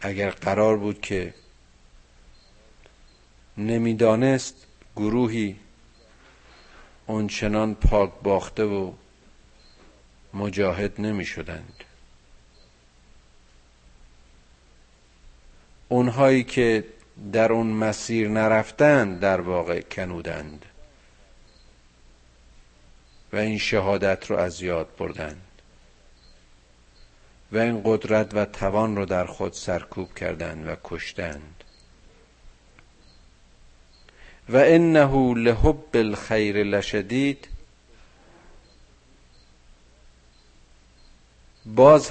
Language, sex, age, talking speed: Persian, male, 50-69, 65 wpm